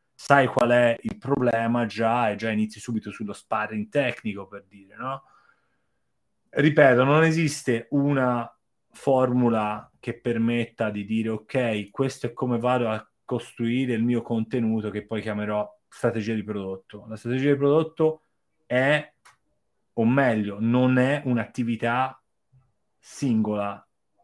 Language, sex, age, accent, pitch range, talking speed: Italian, male, 30-49, native, 110-130 Hz, 130 wpm